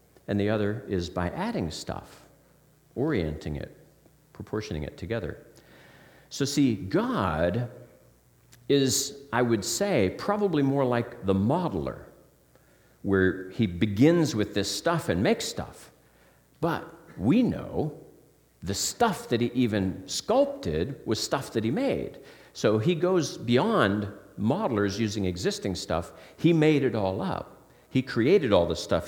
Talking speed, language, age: 135 wpm, English, 50-69